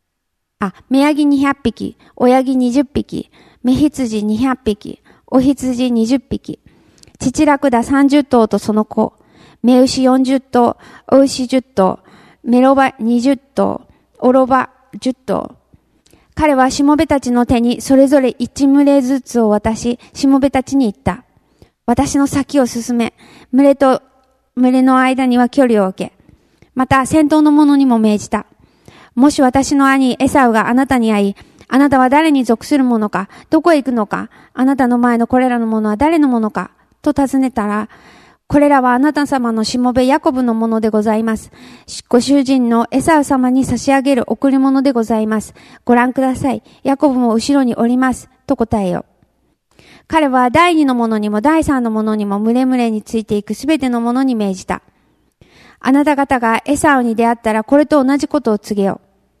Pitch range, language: 230-275 Hz, English